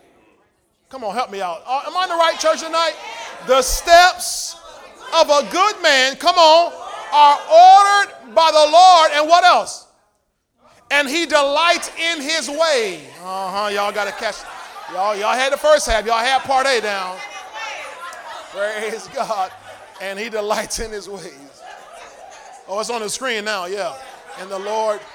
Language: English